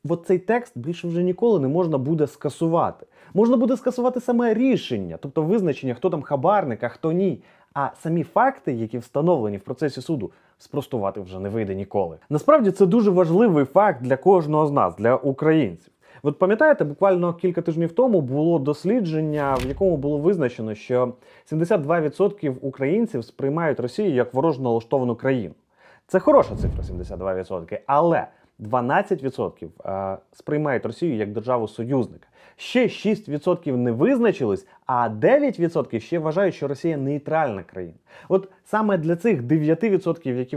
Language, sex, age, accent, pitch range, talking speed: Ukrainian, male, 30-49, native, 125-185 Hz, 140 wpm